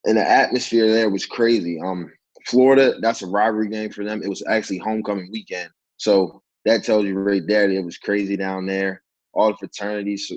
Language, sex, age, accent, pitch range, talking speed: English, male, 20-39, American, 90-105 Hz, 195 wpm